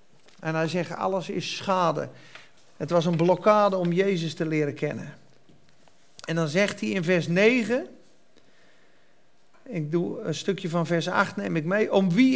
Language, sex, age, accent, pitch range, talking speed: Dutch, male, 40-59, Dutch, 180-240 Hz, 165 wpm